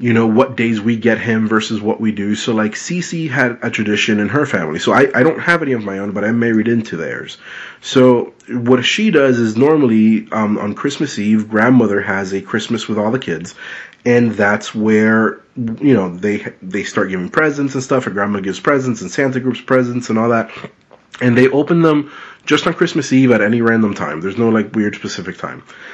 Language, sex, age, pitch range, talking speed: English, male, 30-49, 110-125 Hz, 215 wpm